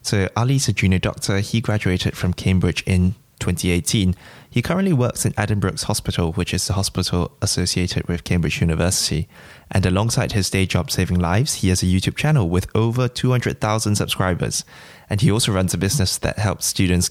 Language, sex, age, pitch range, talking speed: English, male, 20-39, 90-110 Hz, 175 wpm